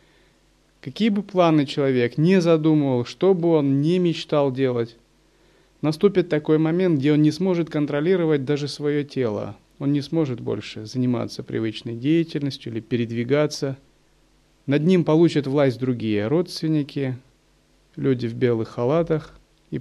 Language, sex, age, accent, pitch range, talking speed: Russian, male, 30-49, native, 120-165 Hz, 130 wpm